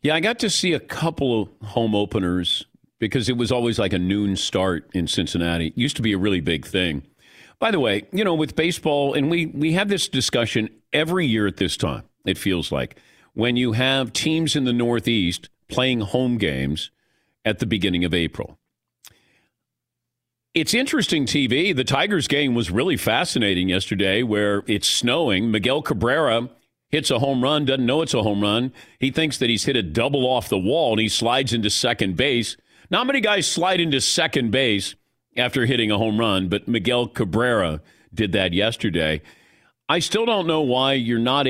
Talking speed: 190 wpm